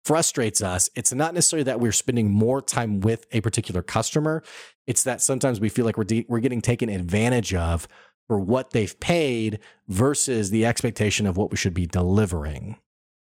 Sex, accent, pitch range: male, American, 100-135 Hz